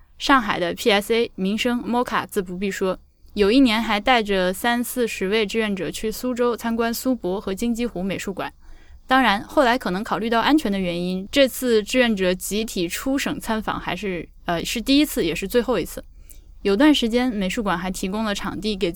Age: 10-29